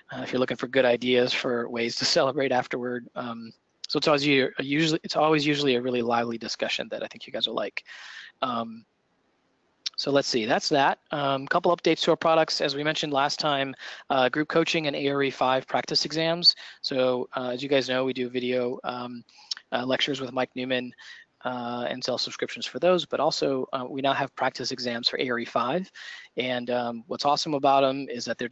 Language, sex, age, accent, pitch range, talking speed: English, male, 20-39, American, 120-140 Hz, 200 wpm